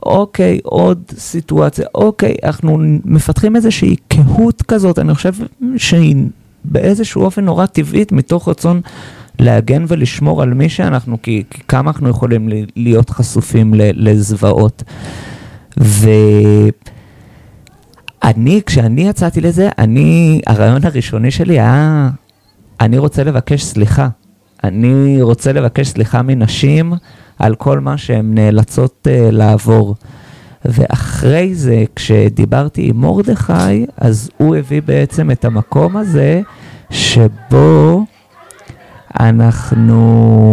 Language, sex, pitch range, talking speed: Hebrew, male, 115-155 Hz, 100 wpm